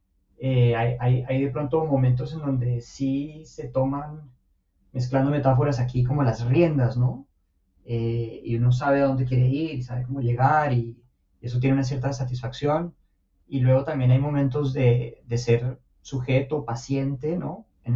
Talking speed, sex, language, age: 160 wpm, male, Spanish, 30-49